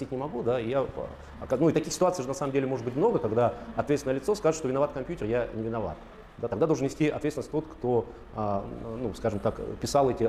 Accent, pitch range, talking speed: native, 110-140 Hz, 220 wpm